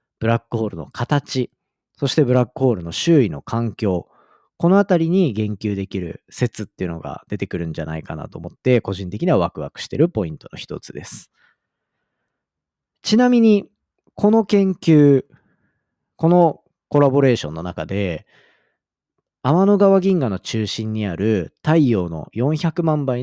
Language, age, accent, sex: Japanese, 40-59, native, male